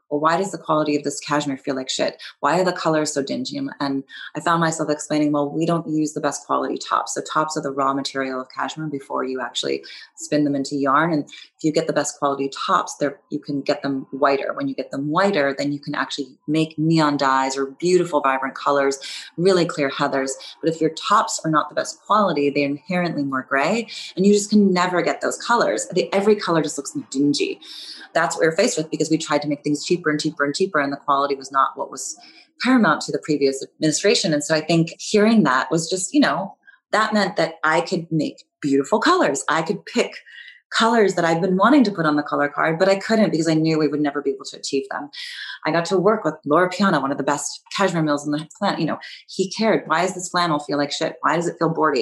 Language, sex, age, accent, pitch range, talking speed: English, female, 20-39, American, 145-190 Hz, 245 wpm